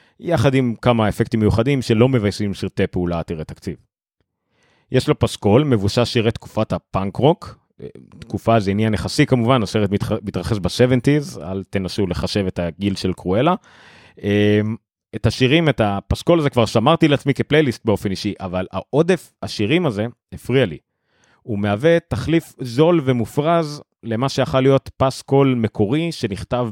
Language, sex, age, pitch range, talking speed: Hebrew, male, 30-49, 100-140 Hz, 140 wpm